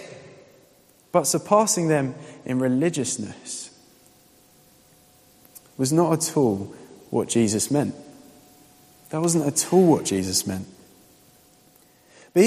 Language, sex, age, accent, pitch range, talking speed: English, male, 20-39, British, 130-170 Hz, 95 wpm